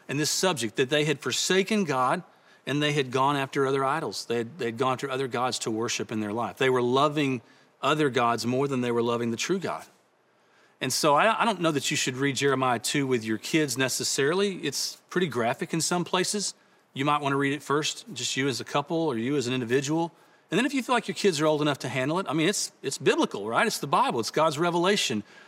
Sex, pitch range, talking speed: male, 125-170 Hz, 245 wpm